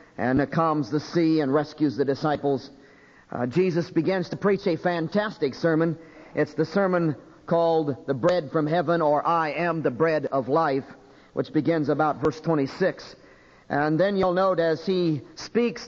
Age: 50-69